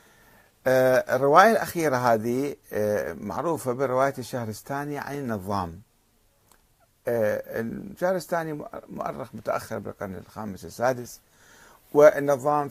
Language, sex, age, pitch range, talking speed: Arabic, male, 50-69, 105-150 Hz, 70 wpm